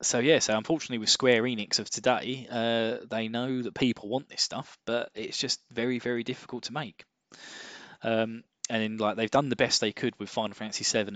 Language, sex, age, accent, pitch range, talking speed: English, male, 10-29, British, 100-125 Hz, 205 wpm